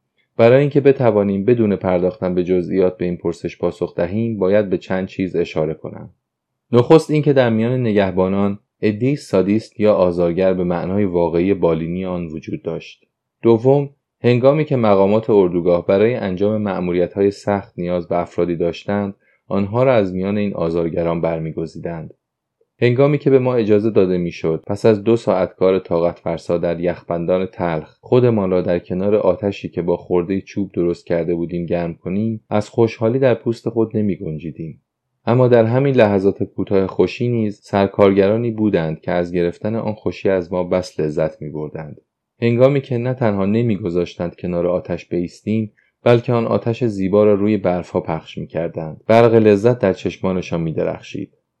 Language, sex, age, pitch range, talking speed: Persian, male, 30-49, 90-115 Hz, 155 wpm